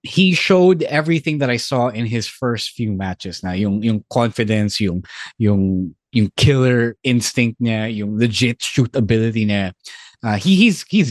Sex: male